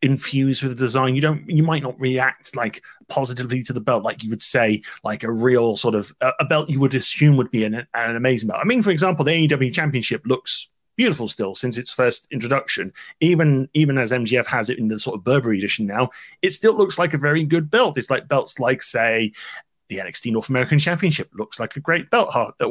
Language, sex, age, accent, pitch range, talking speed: English, male, 30-49, British, 130-200 Hz, 225 wpm